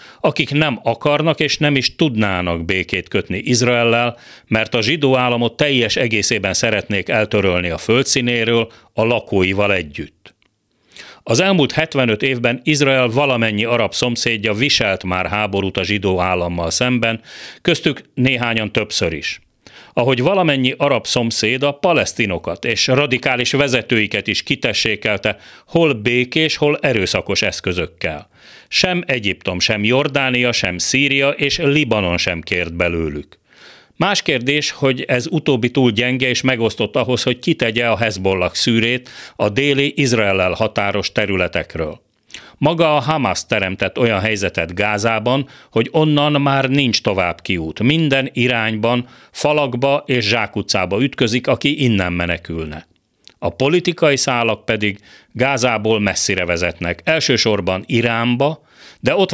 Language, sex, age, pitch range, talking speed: Hungarian, male, 40-59, 100-135 Hz, 125 wpm